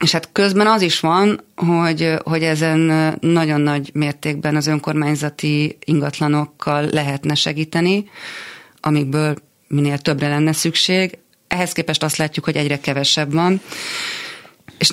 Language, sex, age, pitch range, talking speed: Hungarian, female, 30-49, 145-160 Hz, 125 wpm